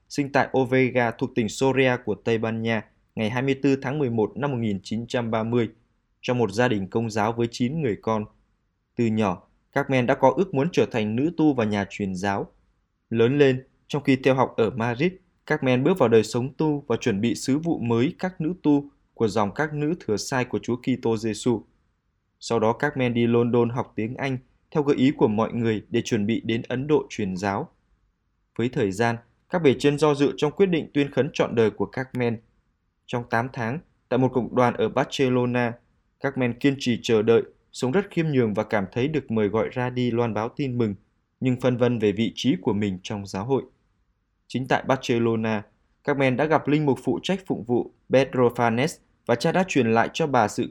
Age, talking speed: 20-39, 210 wpm